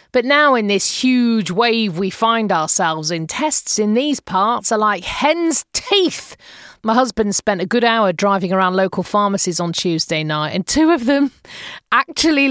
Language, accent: English, British